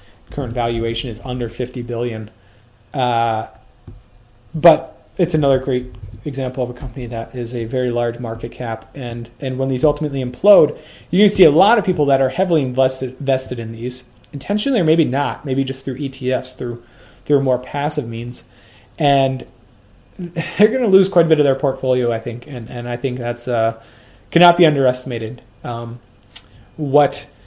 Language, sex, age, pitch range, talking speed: English, male, 30-49, 115-140 Hz, 175 wpm